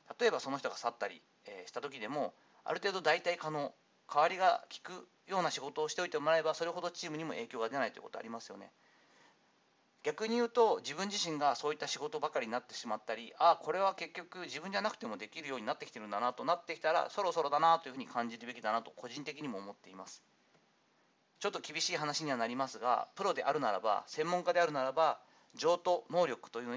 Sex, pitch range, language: male, 135-180 Hz, Japanese